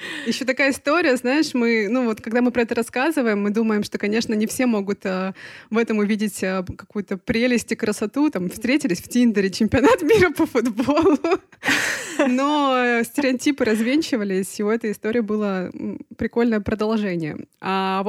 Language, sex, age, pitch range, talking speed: Russian, female, 20-39, 190-245 Hz, 155 wpm